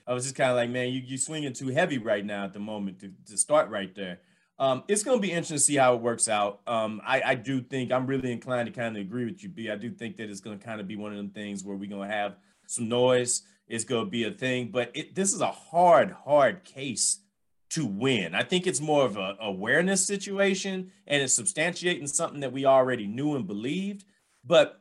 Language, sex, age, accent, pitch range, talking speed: English, male, 30-49, American, 120-165 Hz, 250 wpm